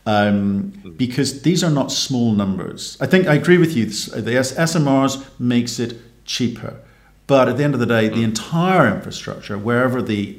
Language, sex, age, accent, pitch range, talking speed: English, male, 50-69, British, 105-125 Hz, 175 wpm